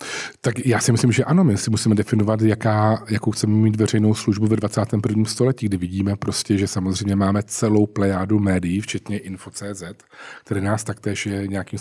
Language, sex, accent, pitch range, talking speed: Czech, male, native, 100-110 Hz, 170 wpm